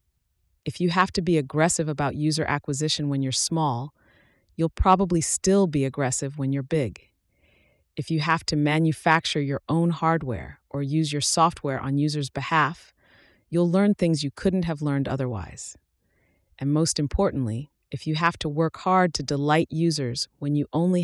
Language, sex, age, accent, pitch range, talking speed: English, female, 30-49, American, 130-165 Hz, 165 wpm